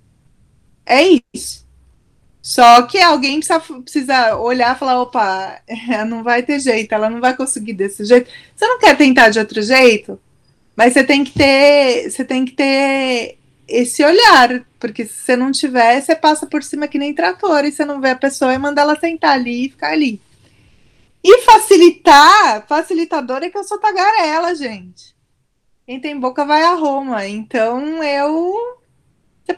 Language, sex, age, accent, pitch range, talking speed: Portuguese, female, 20-39, Brazilian, 240-315 Hz, 170 wpm